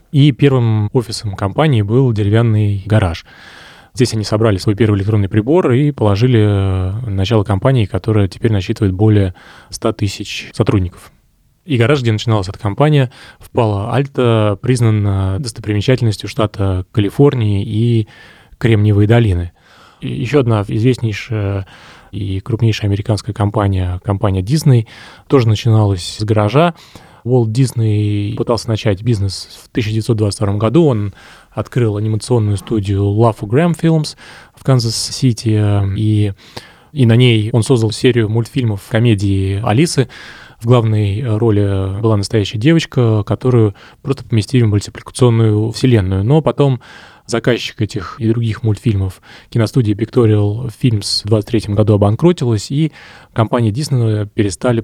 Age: 20-39